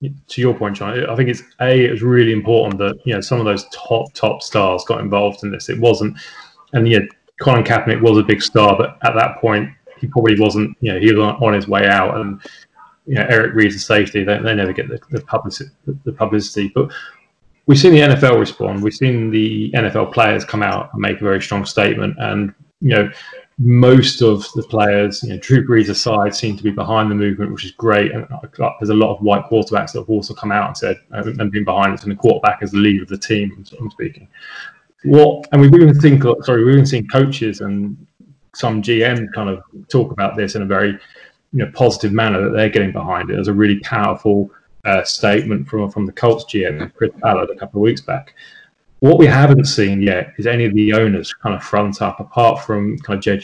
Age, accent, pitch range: 20-39, British, 105-130 Hz